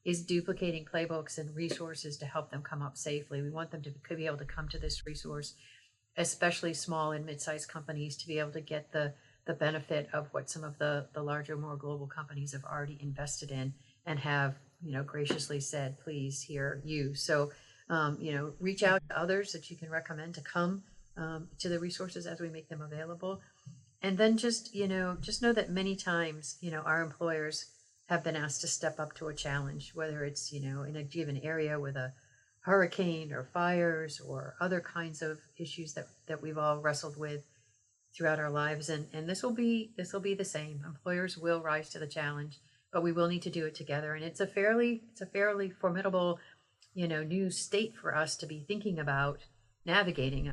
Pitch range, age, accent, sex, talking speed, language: 145-175 Hz, 40-59, American, female, 205 wpm, English